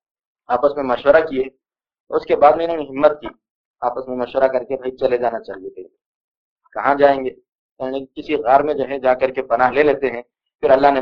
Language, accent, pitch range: English, Indian, 135-180 Hz